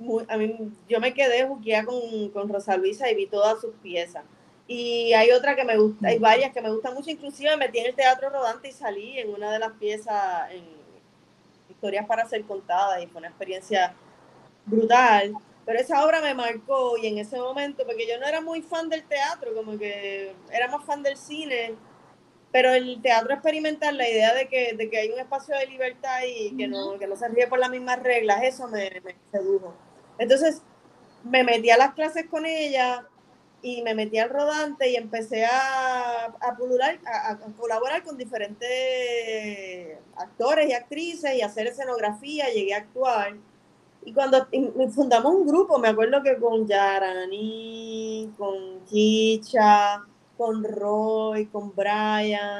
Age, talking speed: 20-39, 175 wpm